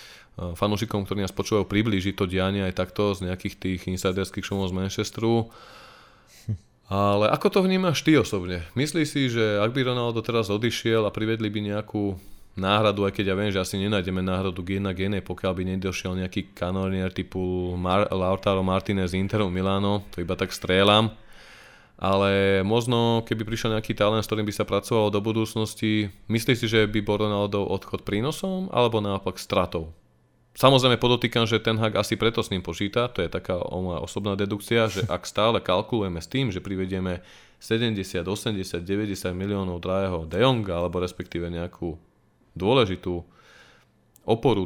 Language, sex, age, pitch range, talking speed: Slovak, male, 20-39, 95-110 Hz, 160 wpm